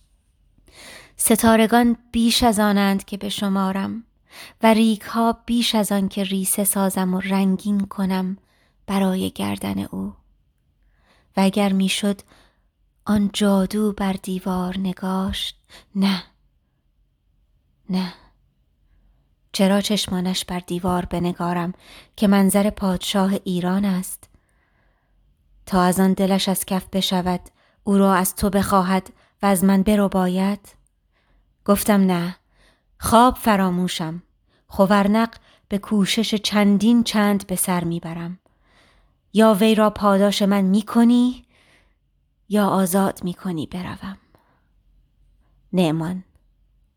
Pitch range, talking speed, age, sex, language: 180-205 Hz, 105 wpm, 20-39, female, Persian